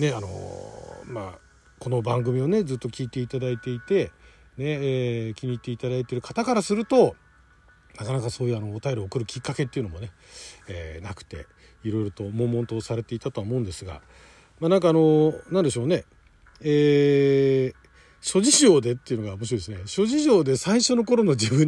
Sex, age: male, 40-59